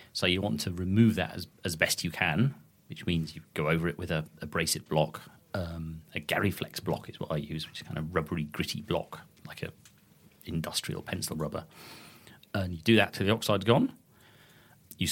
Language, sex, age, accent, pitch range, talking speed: English, male, 40-59, British, 85-110 Hz, 205 wpm